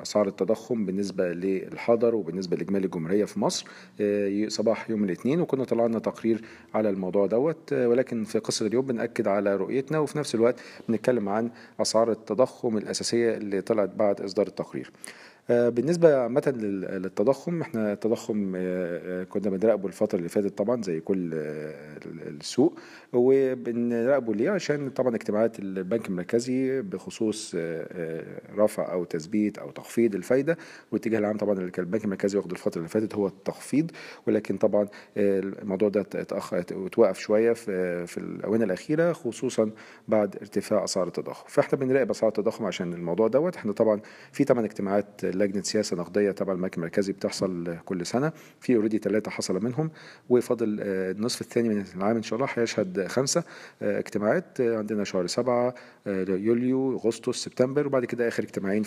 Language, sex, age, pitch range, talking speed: Arabic, male, 40-59, 100-120 Hz, 145 wpm